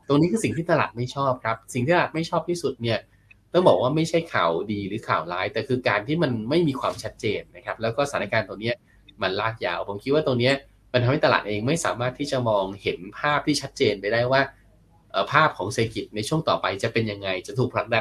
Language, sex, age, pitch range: Thai, male, 20-39, 110-140 Hz